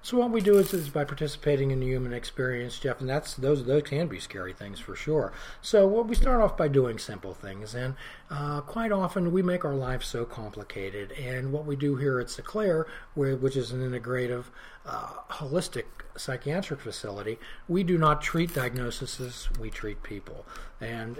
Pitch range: 120-155 Hz